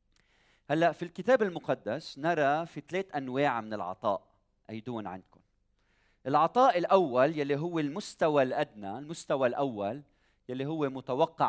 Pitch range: 110-165 Hz